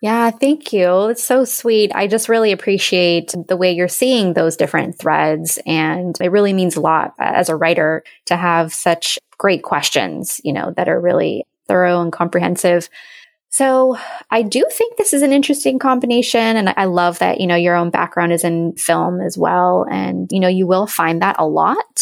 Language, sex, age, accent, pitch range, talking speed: English, female, 20-39, American, 170-225 Hz, 195 wpm